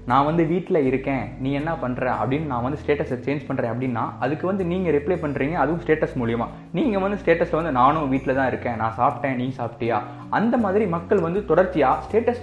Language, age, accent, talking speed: Tamil, 20-39, native, 195 wpm